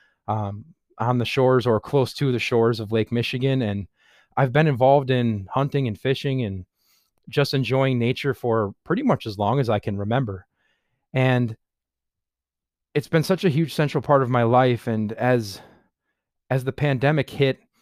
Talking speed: 170 wpm